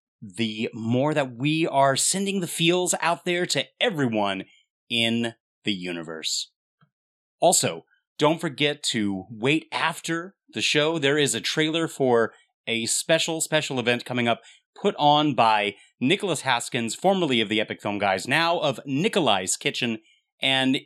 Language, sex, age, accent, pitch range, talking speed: English, male, 30-49, American, 115-160 Hz, 145 wpm